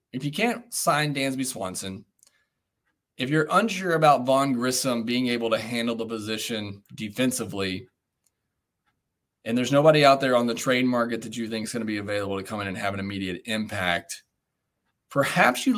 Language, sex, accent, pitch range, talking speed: English, male, American, 110-130 Hz, 175 wpm